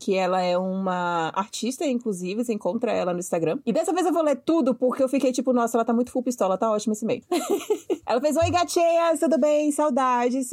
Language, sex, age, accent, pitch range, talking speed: Portuguese, female, 20-39, Brazilian, 210-265 Hz, 220 wpm